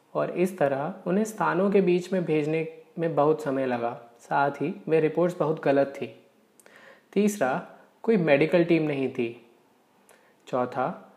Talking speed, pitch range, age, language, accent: 145 wpm, 135-180 Hz, 20-39, Hindi, native